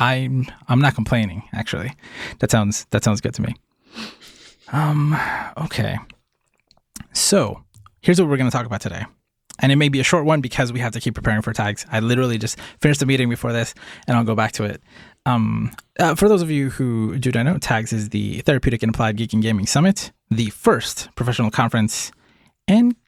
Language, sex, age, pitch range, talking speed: English, male, 20-39, 115-145 Hz, 200 wpm